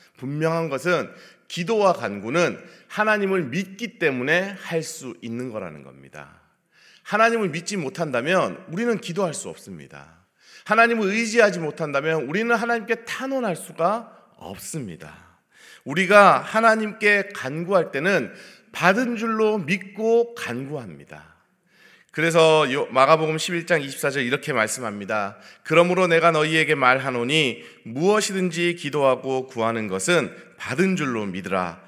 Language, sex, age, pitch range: Korean, male, 40-59, 120-190 Hz